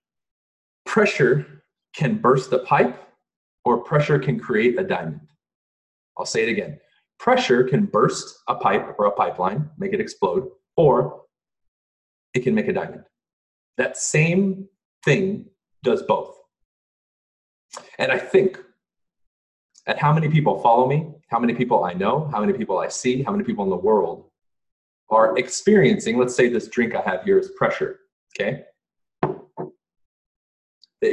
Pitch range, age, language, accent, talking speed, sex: 125-210 Hz, 40-59, English, American, 145 wpm, male